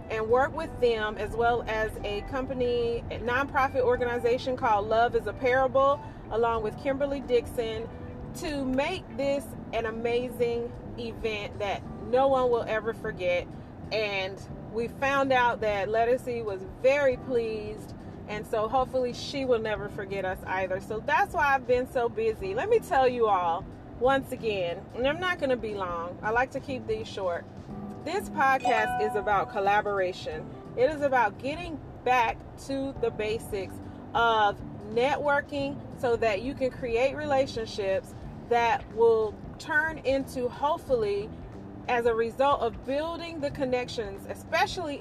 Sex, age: female, 30-49